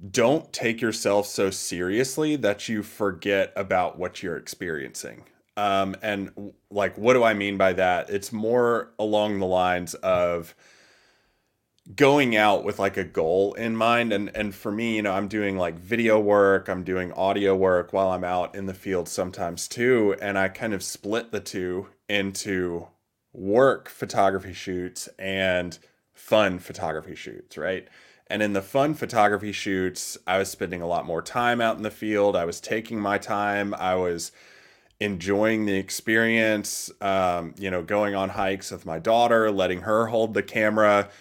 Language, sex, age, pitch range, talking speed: English, male, 20-39, 95-110 Hz, 165 wpm